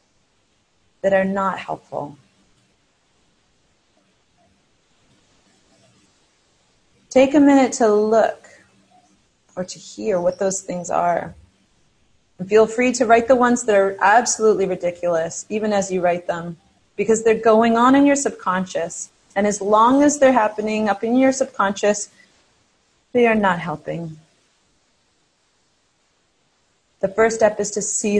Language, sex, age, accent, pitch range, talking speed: English, female, 30-49, American, 180-235 Hz, 125 wpm